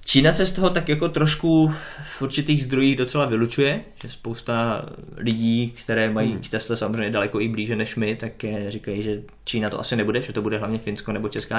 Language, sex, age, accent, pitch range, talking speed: Czech, male, 20-39, native, 105-125 Hz, 195 wpm